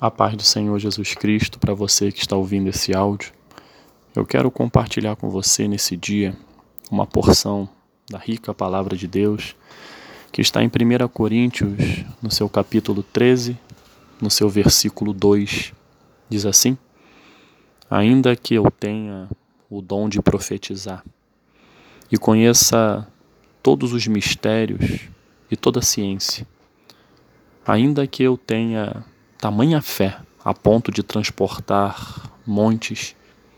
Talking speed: 125 wpm